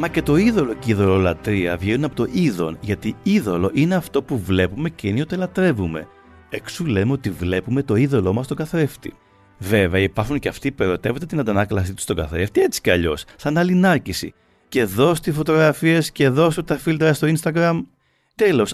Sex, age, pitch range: male, 30-49, 95-155 Hz